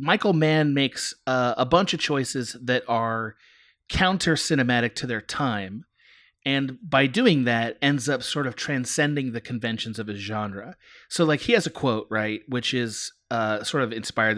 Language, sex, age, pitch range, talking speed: English, male, 30-49, 110-150 Hz, 170 wpm